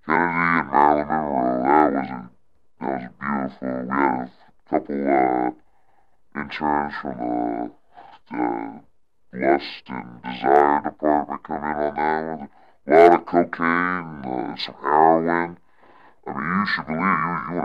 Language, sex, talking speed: English, female, 145 wpm